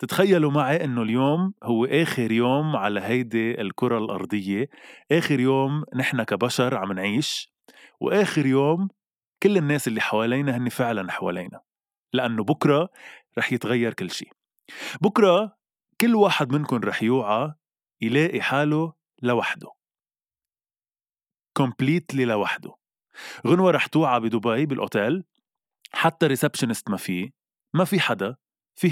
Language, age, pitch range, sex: Arabic, 20-39, 115-155 Hz, male